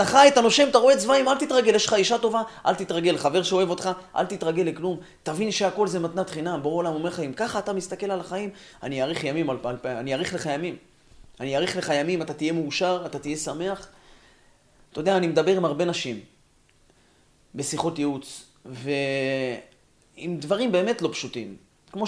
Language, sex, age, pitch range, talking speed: Hebrew, male, 30-49, 135-190 Hz, 175 wpm